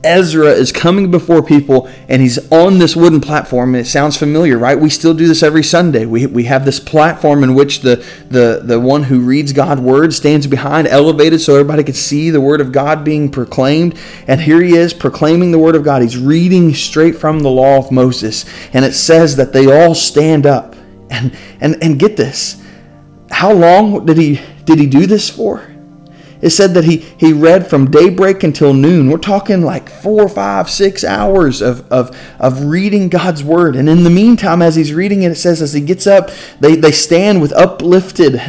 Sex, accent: male, American